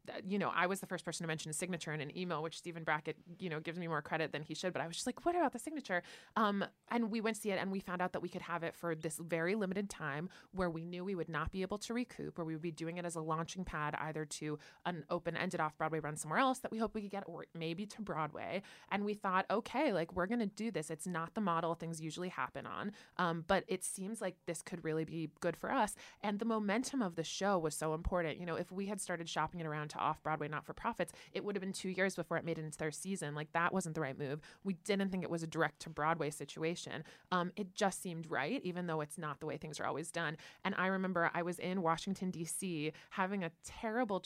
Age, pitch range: 20-39, 160-195 Hz